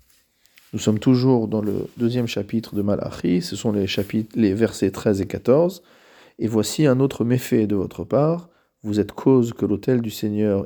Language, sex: French, male